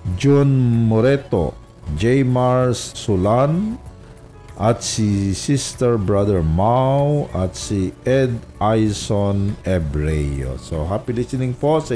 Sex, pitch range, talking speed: male, 85-115 Hz, 100 wpm